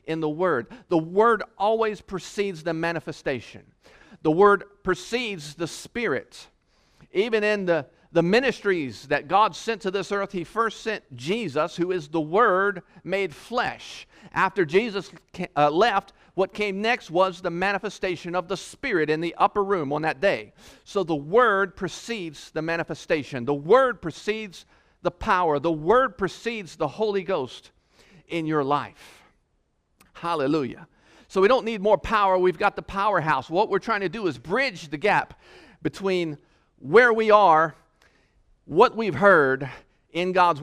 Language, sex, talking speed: English, male, 155 wpm